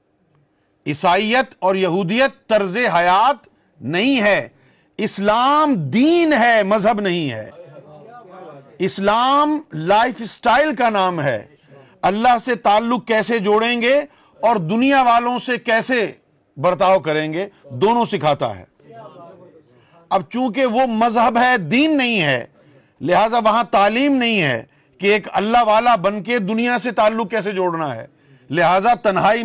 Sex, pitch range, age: male, 155-230 Hz, 50-69